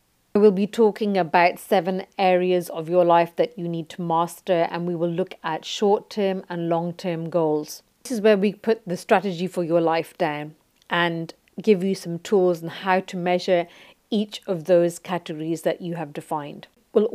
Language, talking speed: English, 180 wpm